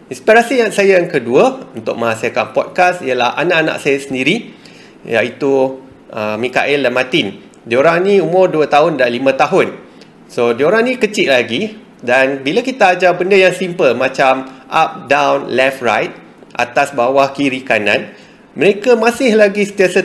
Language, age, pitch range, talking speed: Malay, 30-49, 135-195 Hz, 150 wpm